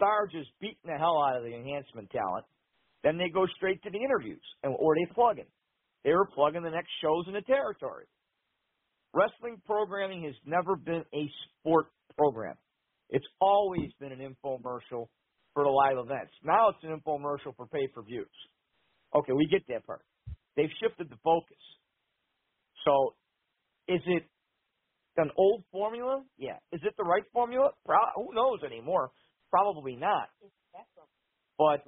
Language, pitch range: English, 150-200 Hz